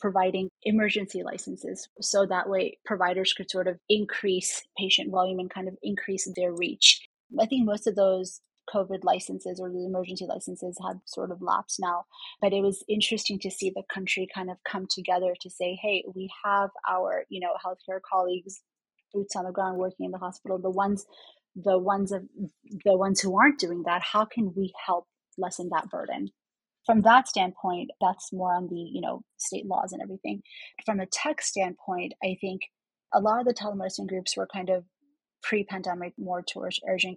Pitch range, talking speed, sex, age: 185-200 Hz, 185 wpm, female, 30-49